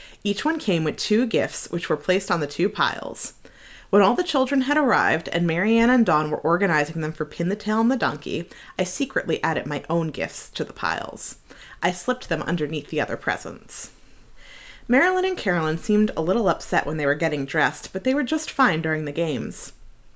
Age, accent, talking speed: 30-49, American, 205 wpm